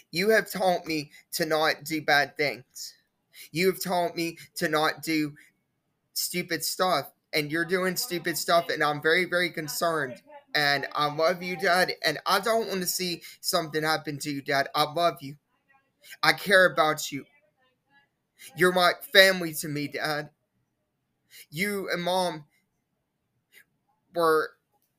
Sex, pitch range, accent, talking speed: male, 155-185 Hz, American, 145 wpm